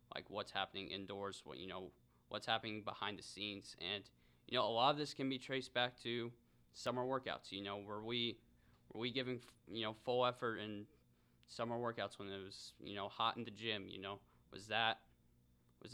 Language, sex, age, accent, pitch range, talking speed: English, male, 20-39, American, 75-120 Hz, 205 wpm